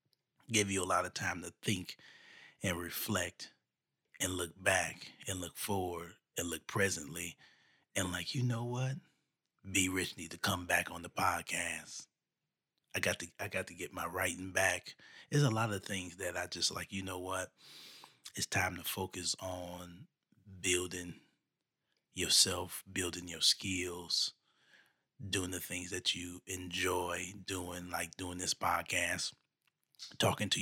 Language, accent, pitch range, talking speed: English, American, 90-100 Hz, 150 wpm